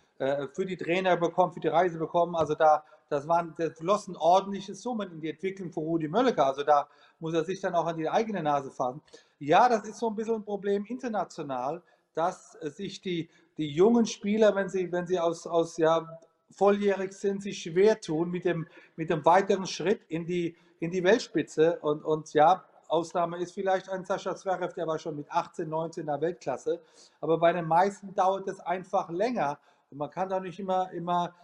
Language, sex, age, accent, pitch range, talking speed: German, male, 40-59, German, 160-185 Hz, 195 wpm